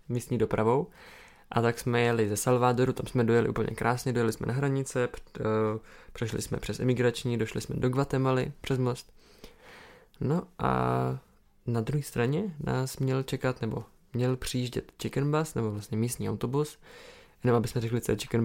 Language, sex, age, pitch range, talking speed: Czech, male, 20-39, 110-130 Hz, 170 wpm